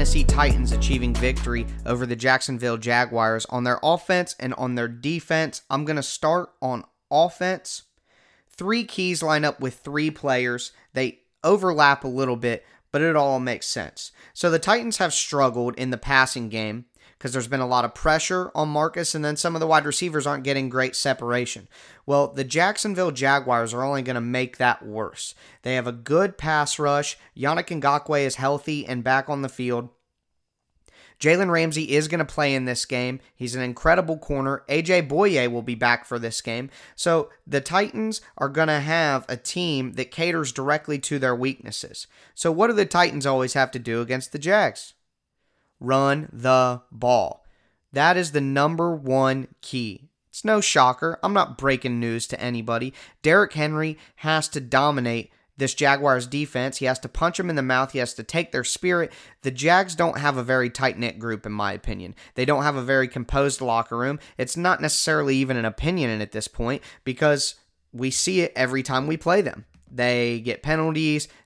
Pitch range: 125-155 Hz